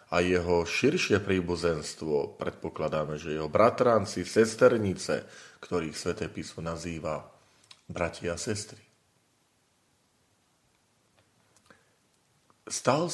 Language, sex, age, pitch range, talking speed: Slovak, male, 40-59, 85-115 Hz, 80 wpm